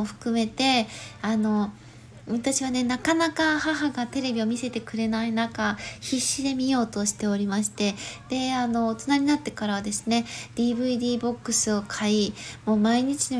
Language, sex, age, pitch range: Japanese, female, 20-39, 205-250 Hz